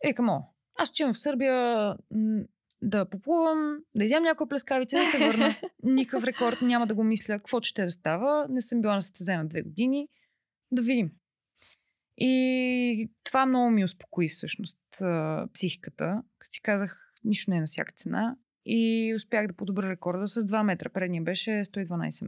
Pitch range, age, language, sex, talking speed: 195-245 Hz, 20-39, Bulgarian, female, 160 wpm